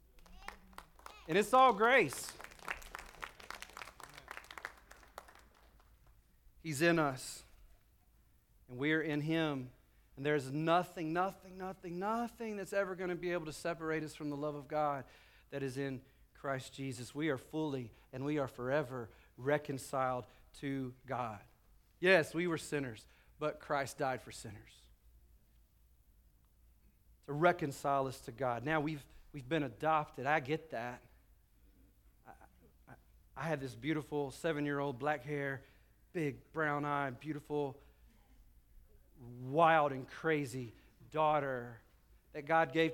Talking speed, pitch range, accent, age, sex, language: 120 wpm, 130-160 Hz, American, 40-59, male, English